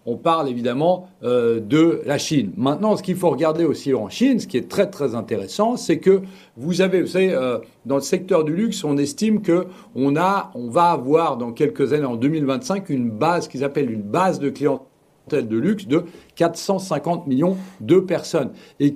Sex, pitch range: male, 145-200 Hz